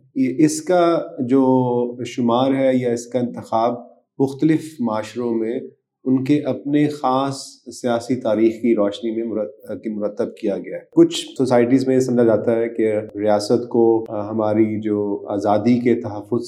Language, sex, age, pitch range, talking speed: Urdu, male, 30-49, 110-135 Hz, 145 wpm